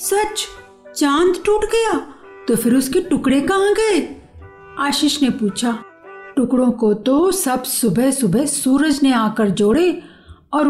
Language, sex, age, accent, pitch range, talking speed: Hindi, female, 50-69, native, 220-335 Hz, 135 wpm